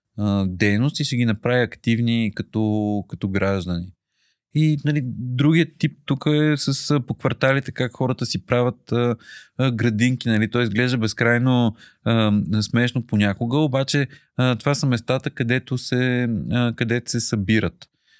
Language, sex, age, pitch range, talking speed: Bulgarian, male, 30-49, 110-130 Hz, 130 wpm